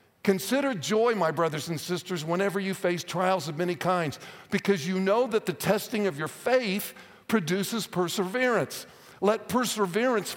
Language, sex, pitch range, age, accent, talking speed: English, male, 170-210 Hz, 50-69, American, 150 wpm